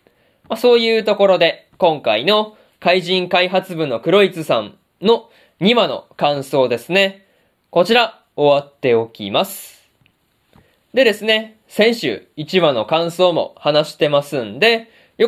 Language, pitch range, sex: Japanese, 140-215 Hz, male